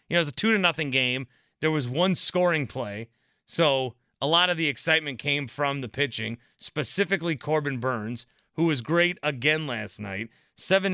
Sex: male